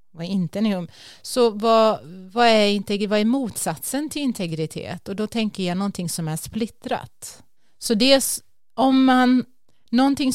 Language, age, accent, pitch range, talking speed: Swedish, 30-49, native, 175-225 Hz, 135 wpm